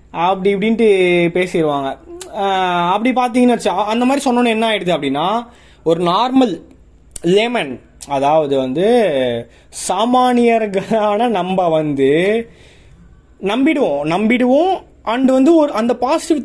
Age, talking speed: 20-39, 100 wpm